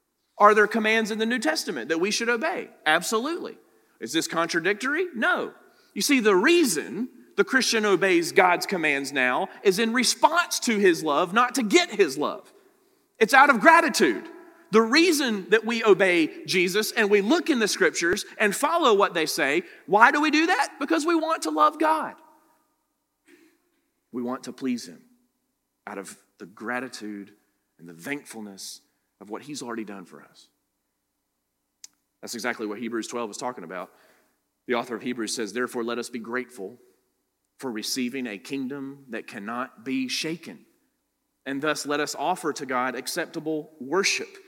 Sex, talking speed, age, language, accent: male, 165 wpm, 40-59, English, American